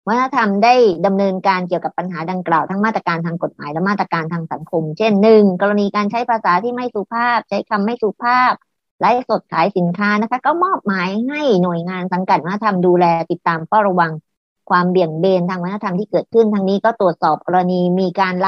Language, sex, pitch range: English, male, 175-215 Hz